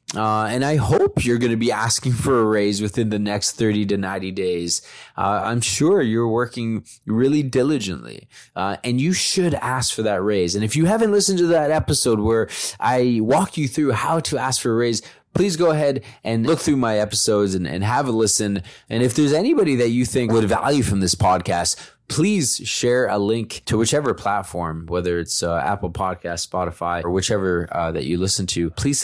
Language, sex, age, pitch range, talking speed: English, male, 20-39, 95-130 Hz, 205 wpm